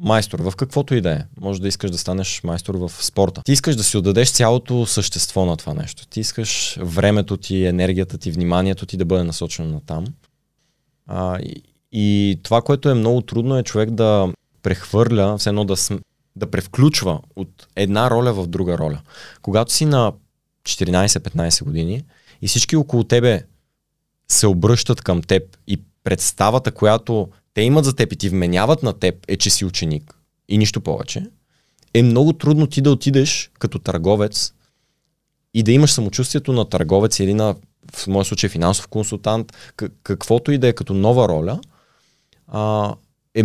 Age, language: 20-39, Bulgarian